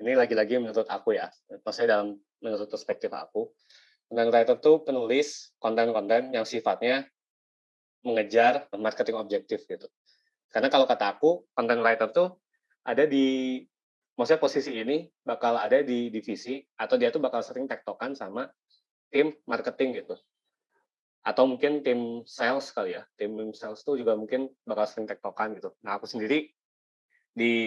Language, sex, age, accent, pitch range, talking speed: Indonesian, male, 20-39, native, 115-145 Hz, 145 wpm